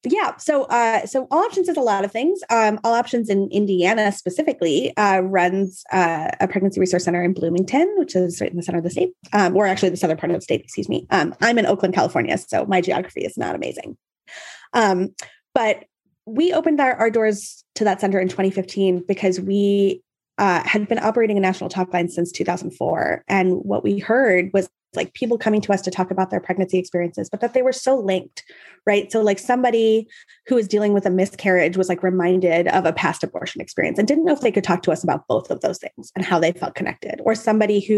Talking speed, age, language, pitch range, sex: 225 wpm, 20-39, English, 180-225 Hz, female